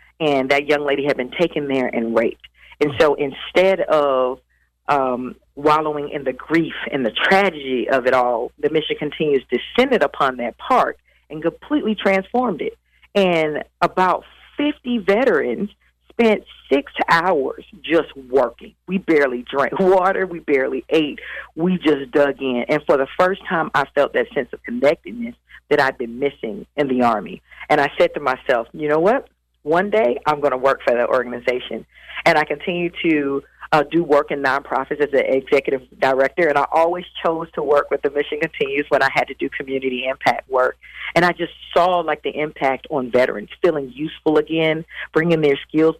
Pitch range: 140-175 Hz